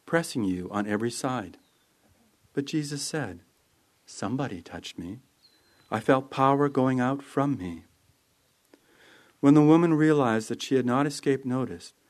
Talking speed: 140 wpm